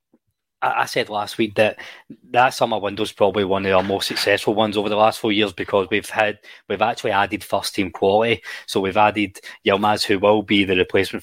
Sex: male